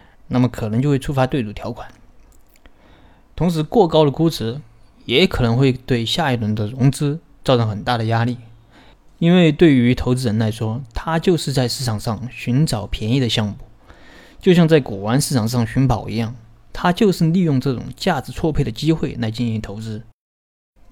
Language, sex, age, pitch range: Chinese, male, 20-39, 110-150 Hz